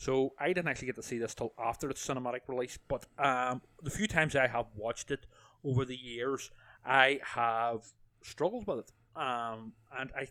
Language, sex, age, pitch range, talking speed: English, male, 30-49, 120-155 Hz, 190 wpm